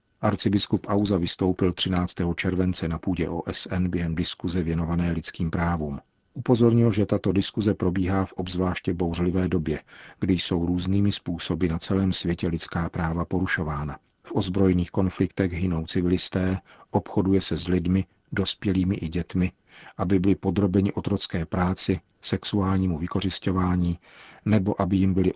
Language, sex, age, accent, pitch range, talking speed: Czech, male, 50-69, native, 85-95 Hz, 130 wpm